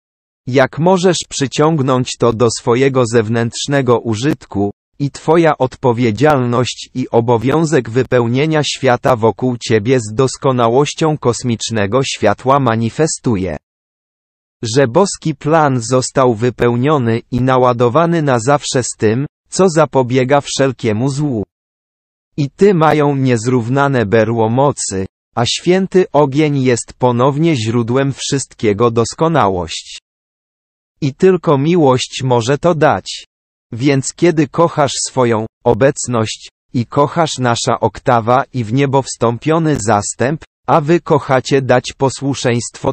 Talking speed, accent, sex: 105 wpm, Polish, male